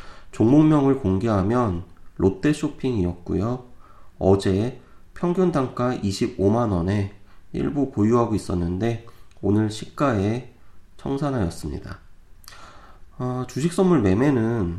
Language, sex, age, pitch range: Korean, male, 30-49, 95-120 Hz